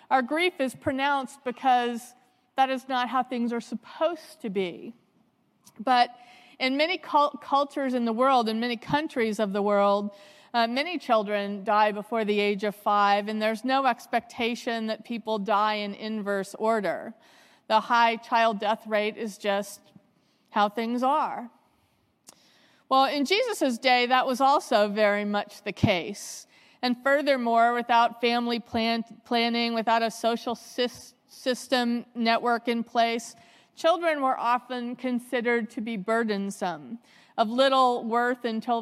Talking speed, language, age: 140 wpm, English, 40-59